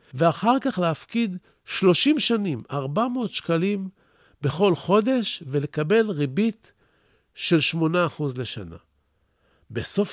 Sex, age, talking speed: male, 50-69, 90 wpm